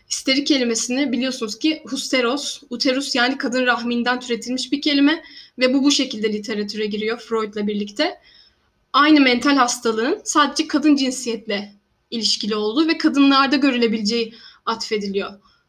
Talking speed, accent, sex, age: 120 wpm, native, female, 10-29